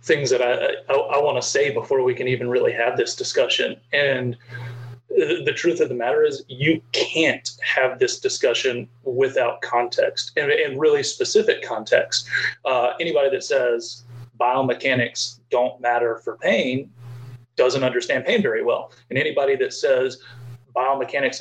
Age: 30-49